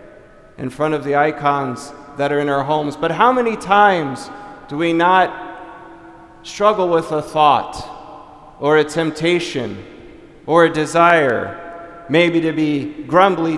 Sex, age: male, 40-59